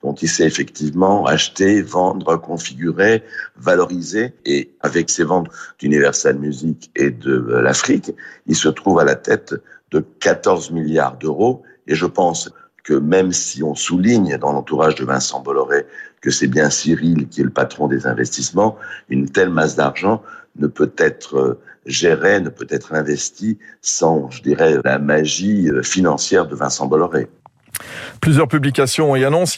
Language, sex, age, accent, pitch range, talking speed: French, male, 60-79, French, 105-170 Hz, 150 wpm